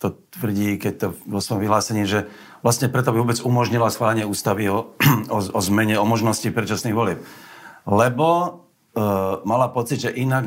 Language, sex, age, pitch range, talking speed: Slovak, male, 50-69, 105-130 Hz, 165 wpm